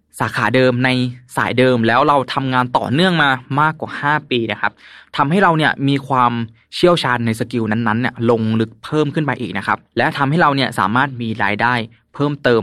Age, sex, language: 20-39, male, Thai